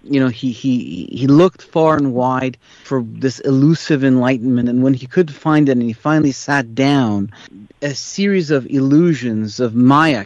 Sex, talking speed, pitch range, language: male, 175 wpm, 120-150 Hz, English